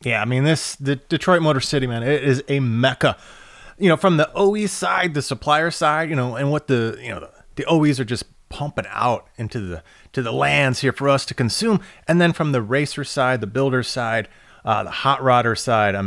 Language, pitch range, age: English, 115-160 Hz, 30-49